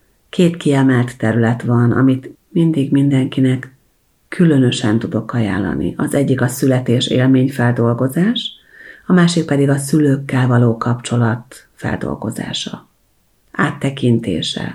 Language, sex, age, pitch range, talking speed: Hungarian, female, 40-59, 120-150 Hz, 100 wpm